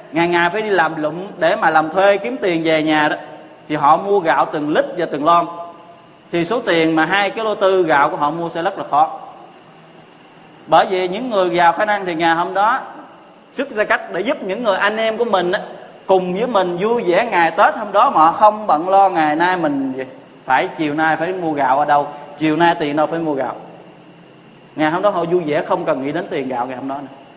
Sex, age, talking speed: male, 20-39, 245 wpm